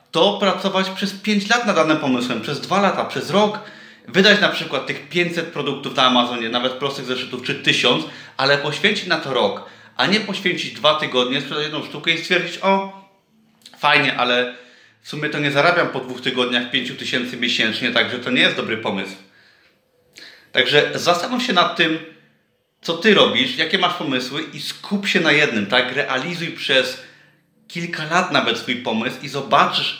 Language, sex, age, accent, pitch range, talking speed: Polish, male, 30-49, native, 125-175 Hz, 170 wpm